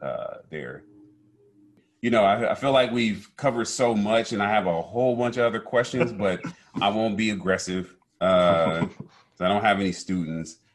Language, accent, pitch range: English, American, 85-100 Hz